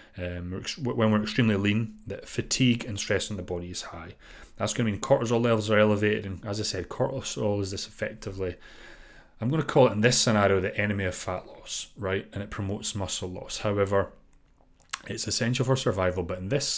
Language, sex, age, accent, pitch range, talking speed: English, male, 30-49, British, 95-125 Hz, 205 wpm